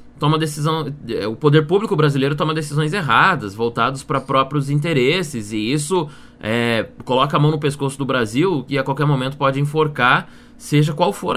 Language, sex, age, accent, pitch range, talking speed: Portuguese, male, 20-39, Brazilian, 115-140 Hz, 170 wpm